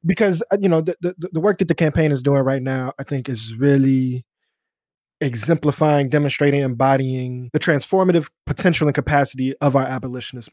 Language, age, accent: English, 20-39, American